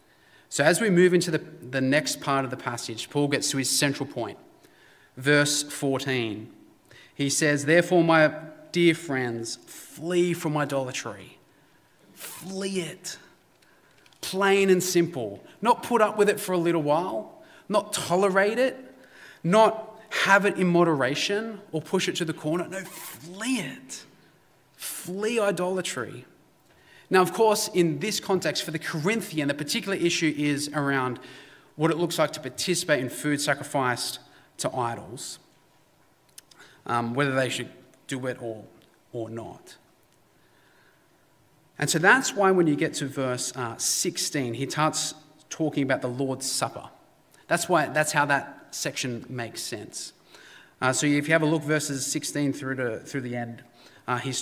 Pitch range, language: 135-180 Hz, English